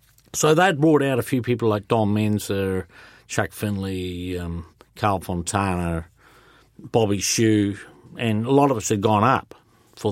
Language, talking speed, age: English, 155 wpm, 50-69